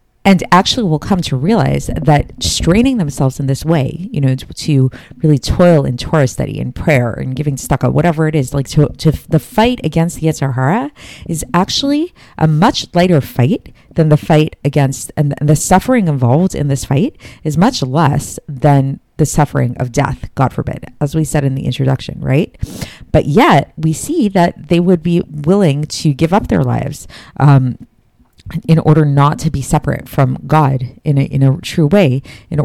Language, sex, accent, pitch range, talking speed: English, female, American, 135-165 Hz, 185 wpm